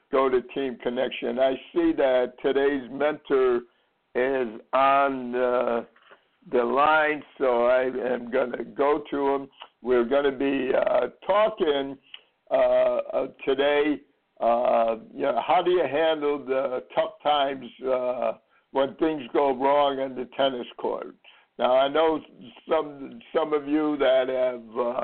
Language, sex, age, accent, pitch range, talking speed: English, male, 60-79, American, 130-155 Hz, 140 wpm